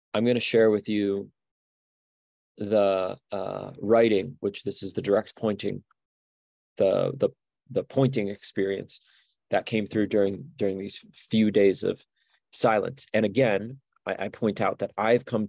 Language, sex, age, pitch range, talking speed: English, male, 30-49, 100-120 Hz, 150 wpm